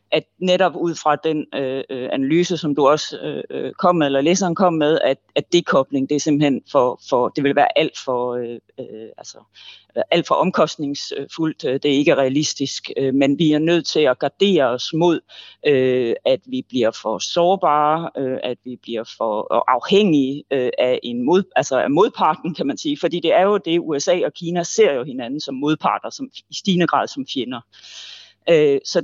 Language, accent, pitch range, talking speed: Danish, native, 135-175 Hz, 185 wpm